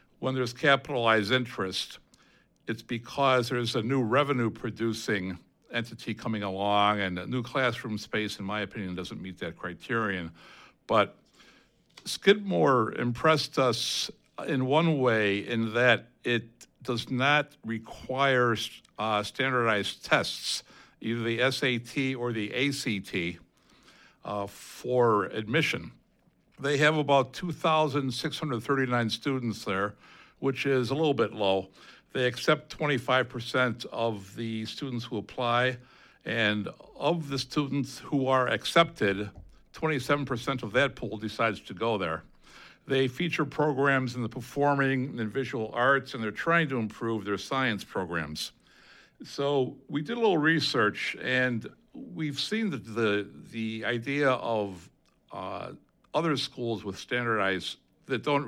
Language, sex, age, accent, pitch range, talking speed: English, male, 60-79, American, 110-140 Hz, 125 wpm